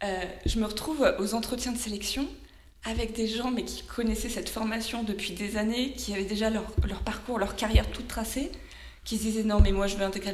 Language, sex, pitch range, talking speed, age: French, female, 190-230 Hz, 215 wpm, 20-39